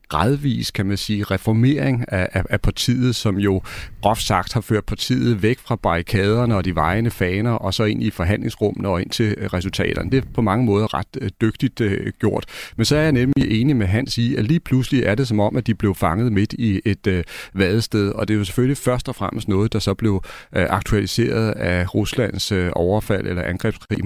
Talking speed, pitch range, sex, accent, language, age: 220 wpm, 95-115 Hz, male, native, Danish, 40-59